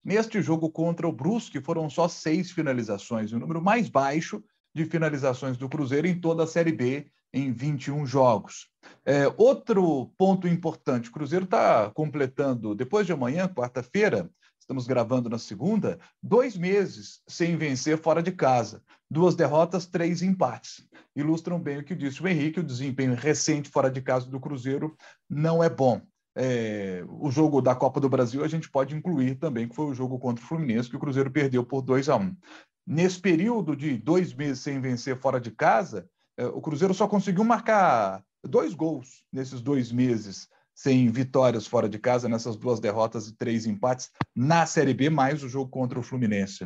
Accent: Brazilian